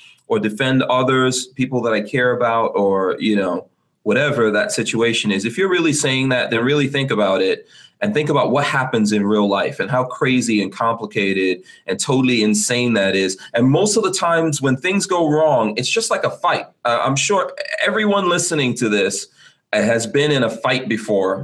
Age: 30-49